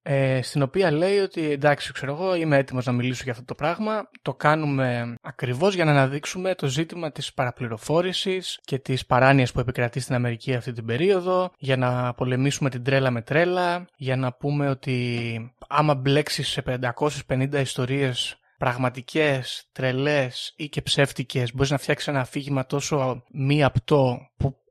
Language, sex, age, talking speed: Greek, male, 20-39, 160 wpm